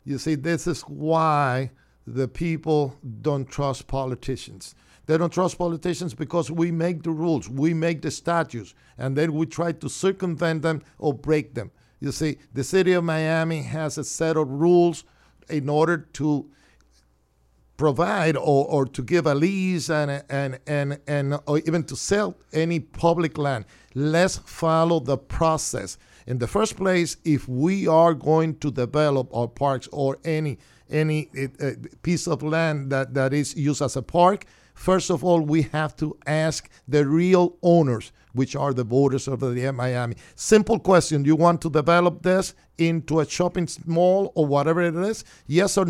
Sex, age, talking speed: male, 50-69, 170 wpm